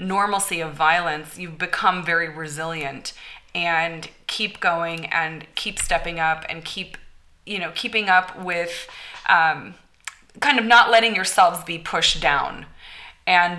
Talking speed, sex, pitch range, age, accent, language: 135 wpm, female, 165-195 Hz, 20-39, American, English